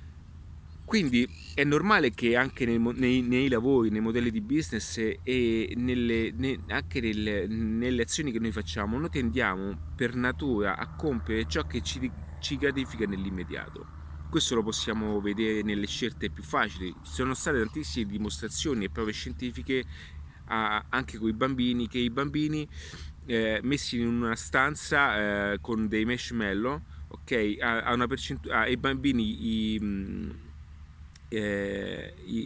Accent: native